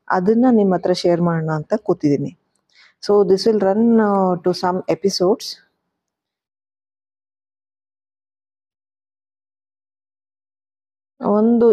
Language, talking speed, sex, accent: Kannada, 75 wpm, female, native